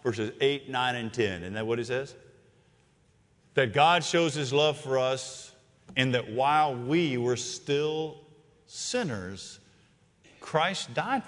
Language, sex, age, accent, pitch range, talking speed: English, male, 50-69, American, 130-200 Hz, 140 wpm